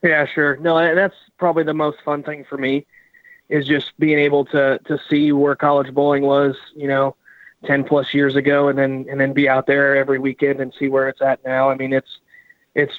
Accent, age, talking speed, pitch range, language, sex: American, 20-39, 215 wpm, 135-145 Hz, English, male